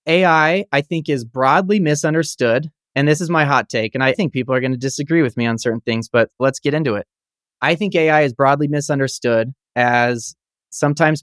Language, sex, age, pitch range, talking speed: English, male, 30-49, 130-155 Hz, 205 wpm